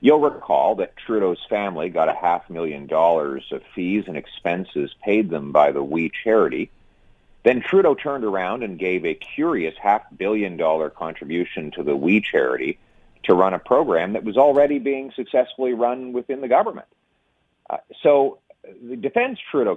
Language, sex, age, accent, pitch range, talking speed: English, male, 40-59, American, 90-130 Hz, 165 wpm